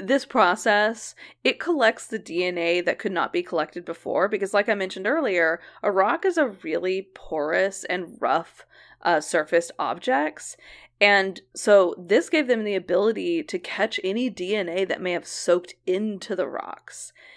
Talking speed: 160 wpm